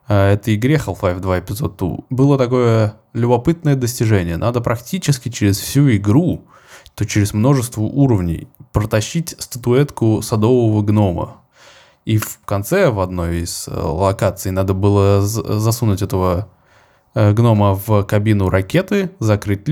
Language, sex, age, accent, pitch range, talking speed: Russian, male, 20-39, native, 100-130 Hz, 120 wpm